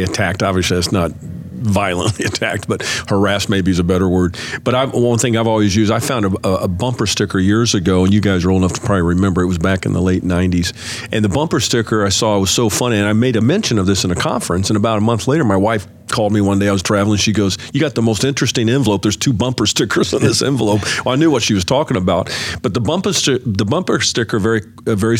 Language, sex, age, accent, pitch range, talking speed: English, male, 50-69, American, 100-130 Hz, 255 wpm